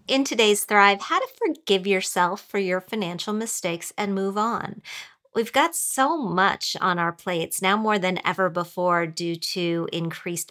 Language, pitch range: English, 175-210 Hz